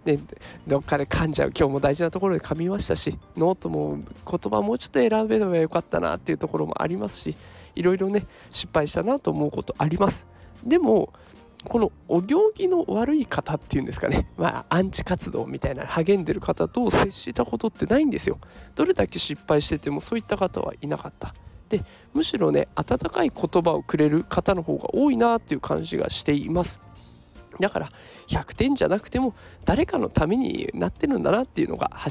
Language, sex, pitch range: Japanese, male, 145-225 Hz